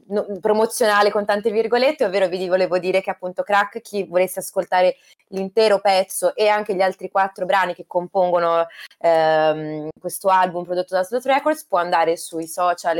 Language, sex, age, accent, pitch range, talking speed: Italian, female, 20-39, native, 170-200 Hz, 160 wpm